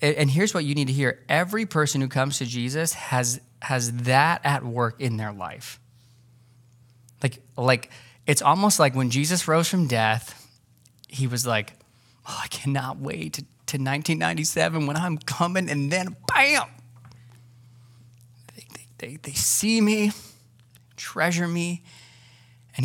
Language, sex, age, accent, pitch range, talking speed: English, male, 20-39, American, 120-155 Hz, 145 wpm